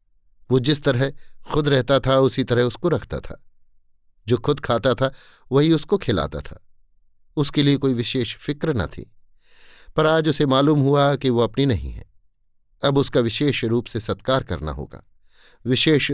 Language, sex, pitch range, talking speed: Hindi, male, 95-135 Hz, 165 wpm